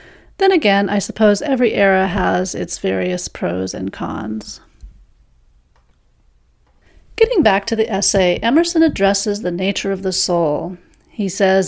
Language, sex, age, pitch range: English, female, 40-59, 175-215 Hz